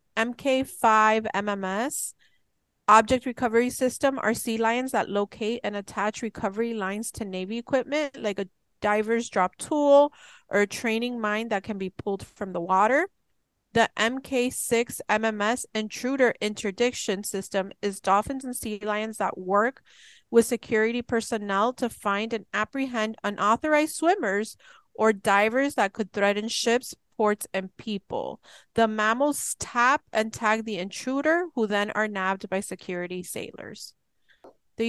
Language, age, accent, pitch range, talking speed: English, 30-49, American, 195-235 Hz, 135 wpm